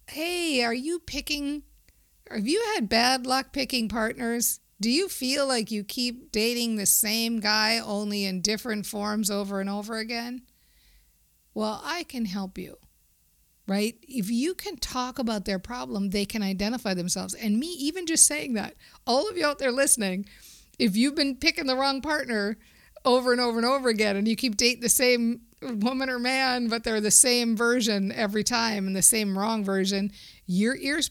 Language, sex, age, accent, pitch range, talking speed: English, female, 50-69, American, 200-250 Hz, 180 wpm